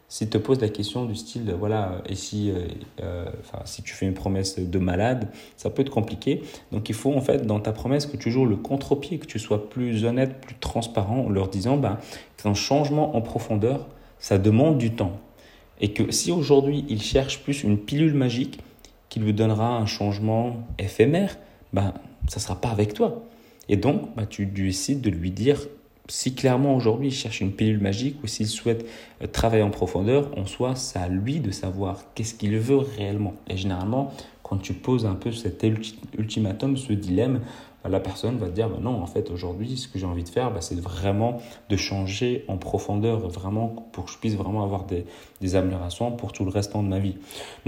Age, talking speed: 30-49, 210 wpm